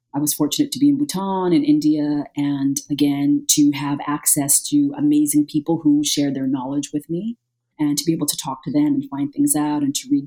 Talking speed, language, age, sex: 230 wpm, English, 30-49, female